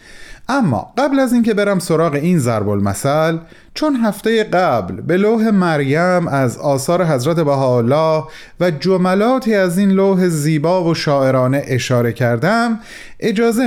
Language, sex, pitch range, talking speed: Persian, male, 135-195 Hz, 125 wpm